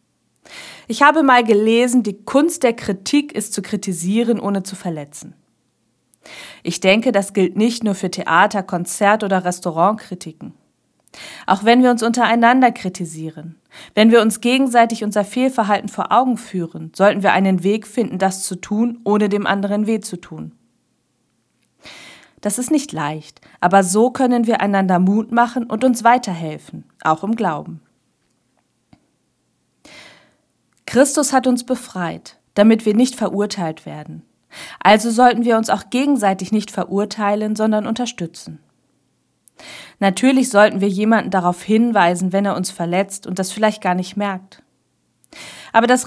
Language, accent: German, German